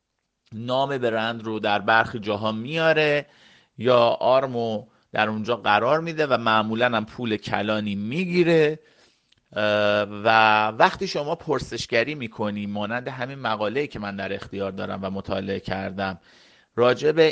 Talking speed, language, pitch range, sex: 130 wpm, Persian, 105-135 Hz, male